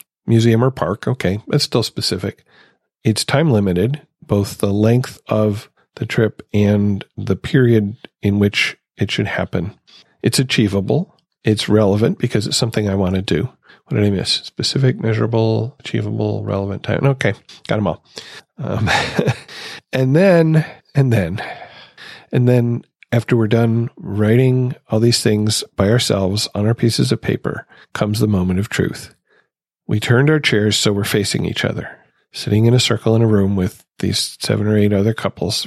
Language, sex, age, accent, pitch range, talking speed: English, male, 50-69, American, 100-125 Hz, 165 wpm